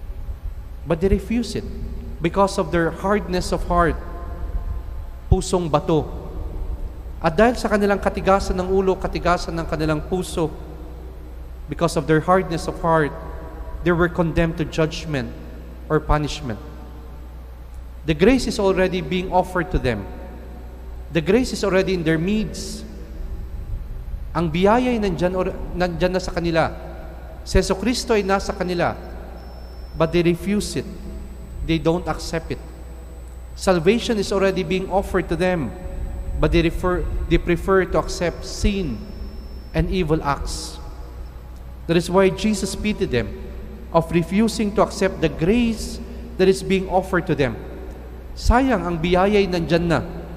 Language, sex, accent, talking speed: English, male, Filipino, 135 wpm